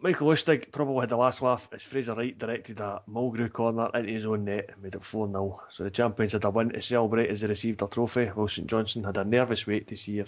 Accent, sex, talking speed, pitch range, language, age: British, male, 265 wpm, 100-120 Hz, English, 20-39